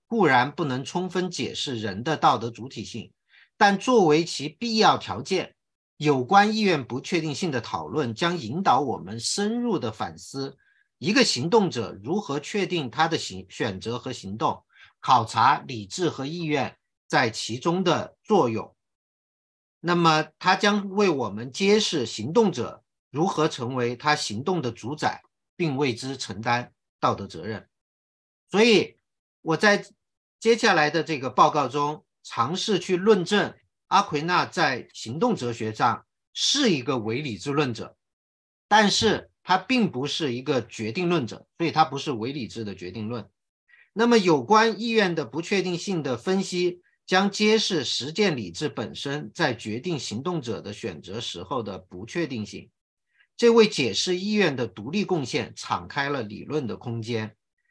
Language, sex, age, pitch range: English, male, 50-69, 120-185 Hz